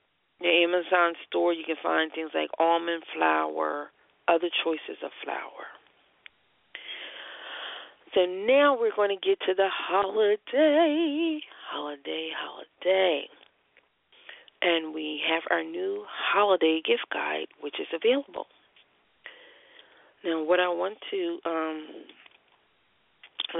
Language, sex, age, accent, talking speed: English, female, 40-59, American, 105 wpm